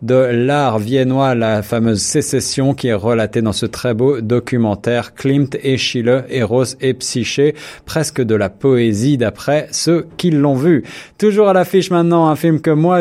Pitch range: 115-140 Hz